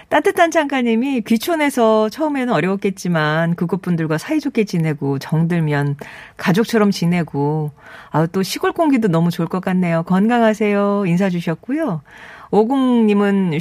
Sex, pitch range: female, 155-230 Hz